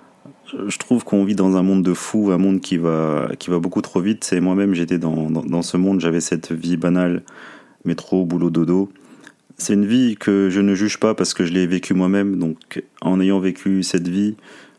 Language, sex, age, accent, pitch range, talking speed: French, male, 30-49, French, 85-95 Hz, 215 wpm